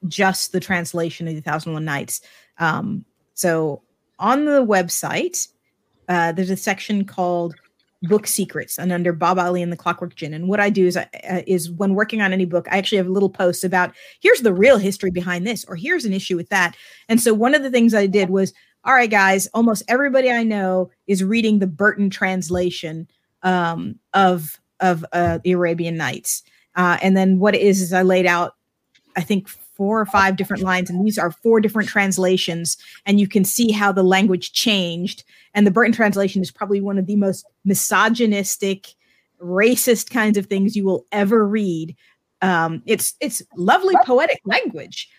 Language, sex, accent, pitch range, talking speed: English, female, American, 180-210 Hz, 195 wpm